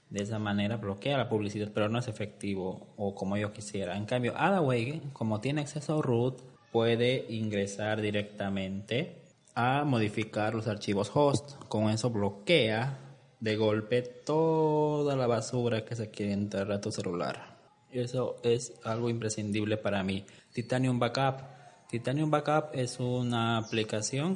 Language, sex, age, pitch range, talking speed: Spanish, male, 20-39, 105-130 Hz, 145 wpm